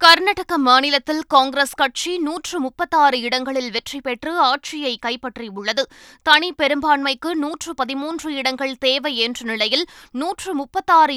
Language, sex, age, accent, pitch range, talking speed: Tamil, female, 20-39, native, 245-300 Hz, 100 wpm